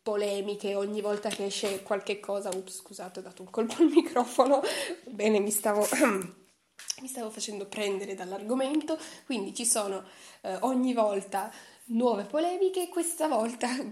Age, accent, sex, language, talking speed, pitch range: 20-39, native, female, Italian, 135 wpm, 195-245 Hz